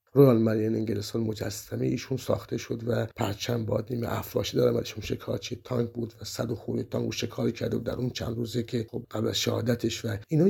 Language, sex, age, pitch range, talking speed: Persian, male, 60-79, 110-120 Hz, 200 wpm